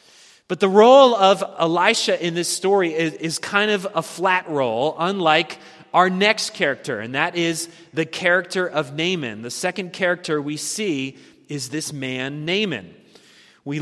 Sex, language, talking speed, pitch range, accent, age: male, English, 155 wpm, 155-205 Hz, American, 30-49